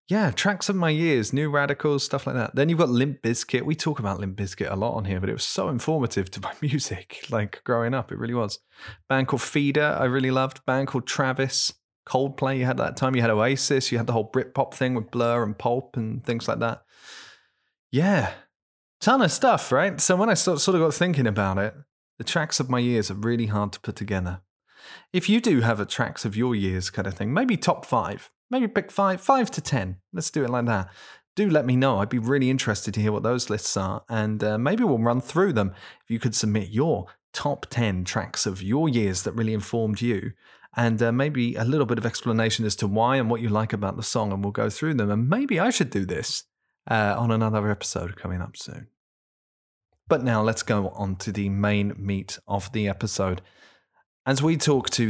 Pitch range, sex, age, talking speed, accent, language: 105-135 Hz, male, 20-39, 225 wpm, British, English